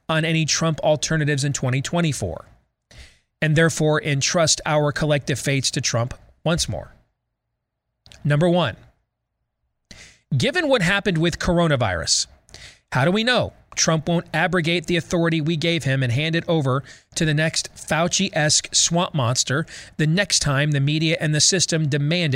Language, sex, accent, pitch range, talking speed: English, male, American, 140-175 Hz, 145 wpm